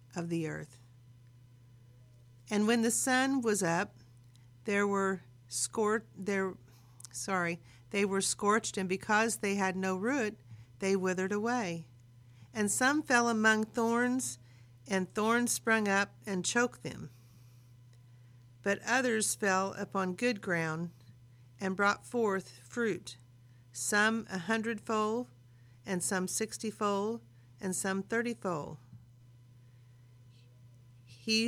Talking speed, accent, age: 110 wpm, American, 50-69